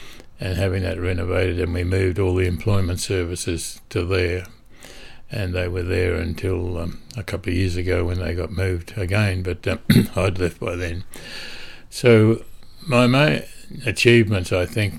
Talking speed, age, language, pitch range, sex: 165 wpm, 60-79, English, 90-105 Hz, male